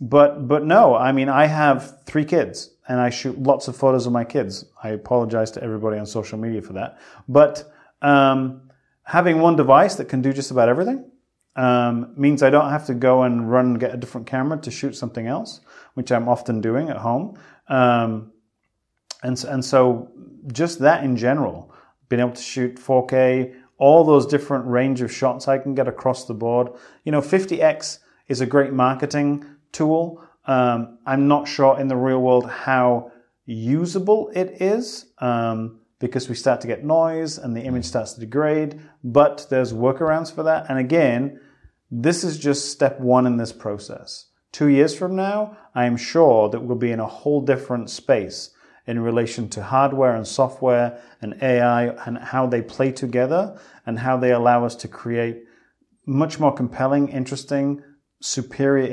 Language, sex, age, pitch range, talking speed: English, male, 30-49, 120-145 Hz, 180 wpm